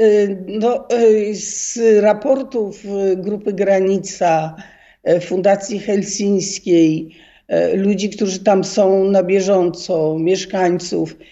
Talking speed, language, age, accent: 75 wpm, Polish, 50-69, native